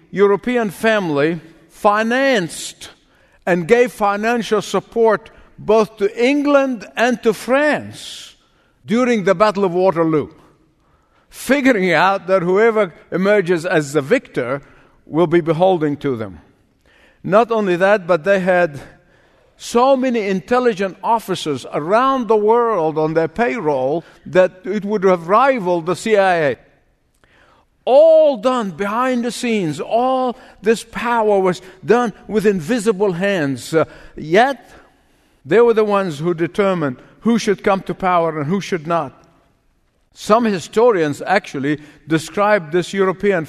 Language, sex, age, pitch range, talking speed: English, male, 50-69, 160-225 Hz, 125 wpm